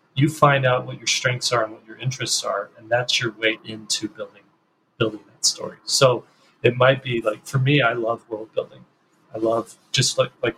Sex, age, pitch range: male, 30-49, 115-140 Hz